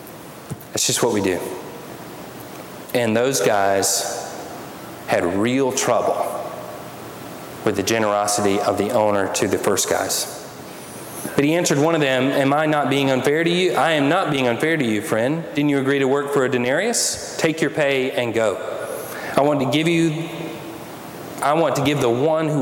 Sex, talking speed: male, 180 wpm